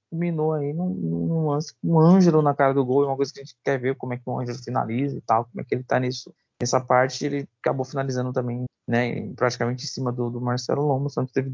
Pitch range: 125-145 Hz